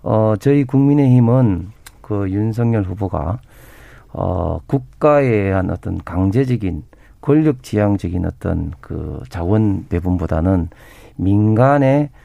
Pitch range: 90-115 Hz